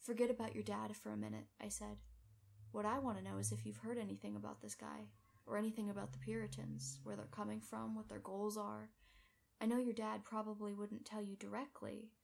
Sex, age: female, 10-29